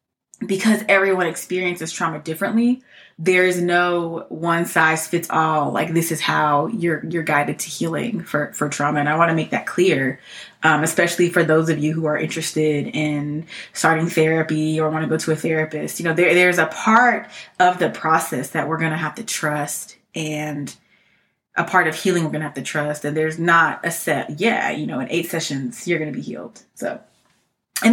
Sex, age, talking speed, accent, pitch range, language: female, 20-39, 205 wpm, American, 155-180 Hz, English